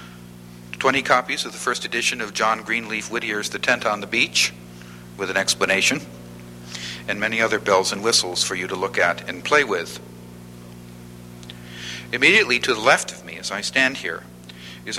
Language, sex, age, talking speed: English, male, 50-69, 170 wpm